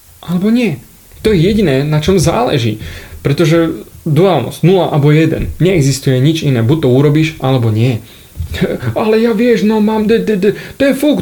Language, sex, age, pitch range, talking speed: Slovak, male, 30-49, 120-175 Hz, 145 wpm